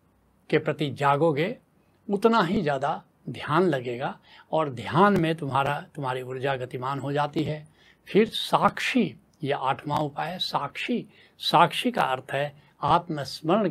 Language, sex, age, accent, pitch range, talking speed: Hindi, male, 70-89, native, 135-180 Hz, 125 wpm